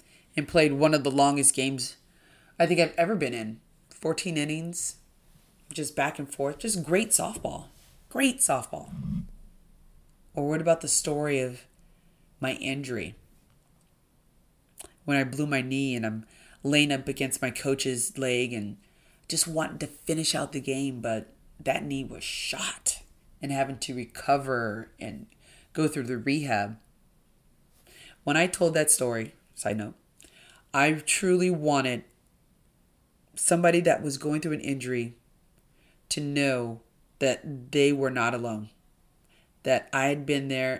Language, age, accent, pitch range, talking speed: English, 30-49, American, 125-155 Hz, 140 wpm